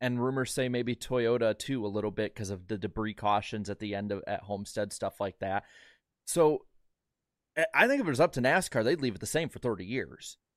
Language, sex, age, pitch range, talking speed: English, male, 30-49, 105-130 Hz, 225 wpm